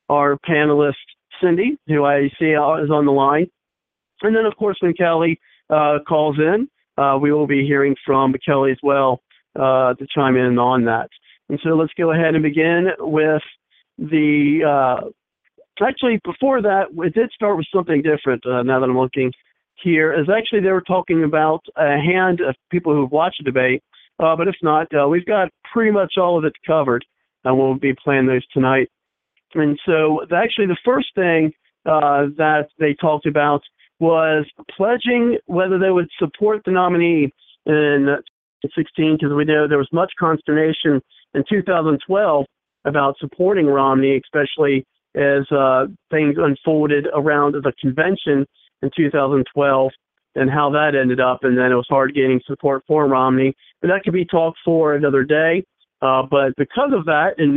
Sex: male